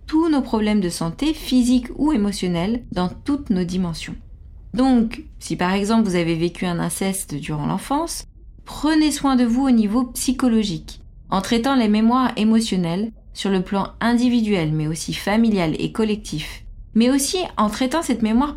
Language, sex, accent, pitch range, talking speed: French, female, French, 180-245 Hz, 160 wpm